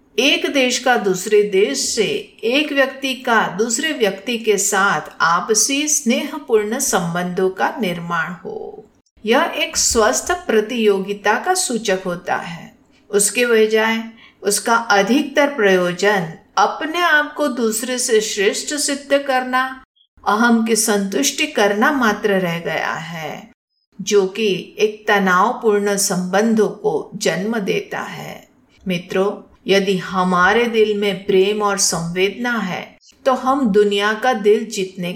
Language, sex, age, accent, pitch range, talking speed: Hindi, female, 50-69, native, 195-265 Hz, 125 wpm